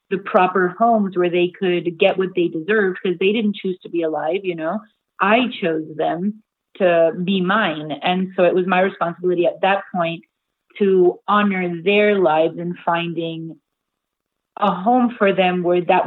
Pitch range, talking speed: 175-205 Hz, 170 wpm